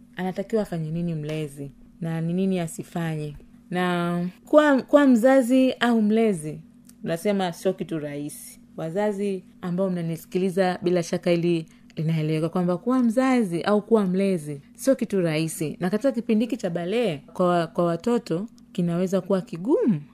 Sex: female